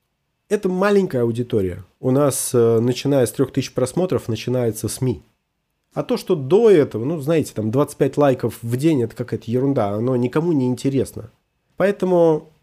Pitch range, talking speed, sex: 115-155 Hz, 145 wpm, male